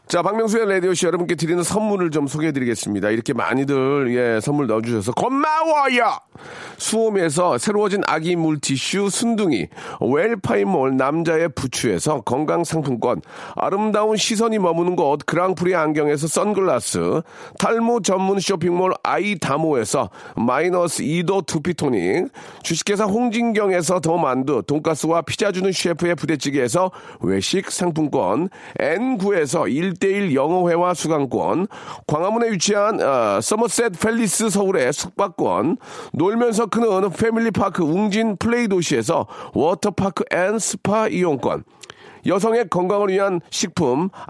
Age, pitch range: 40-59, 160-215 Hz